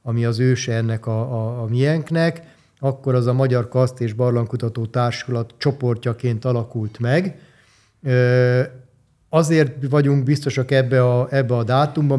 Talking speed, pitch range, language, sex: 135 wpm, 115-135 Hz, Hungarian, male